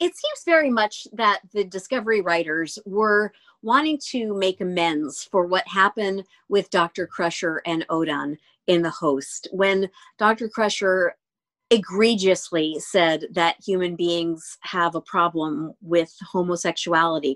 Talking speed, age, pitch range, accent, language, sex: 130 wpm, 50-69, 175-225 Hz, American, English, female